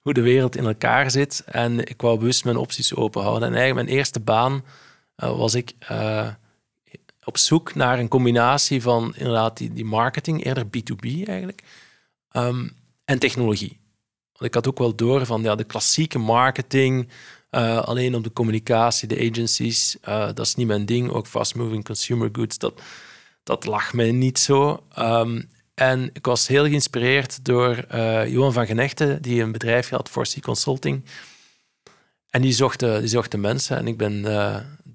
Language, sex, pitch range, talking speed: Dutch, male, 110-130 Hz, 175 wpm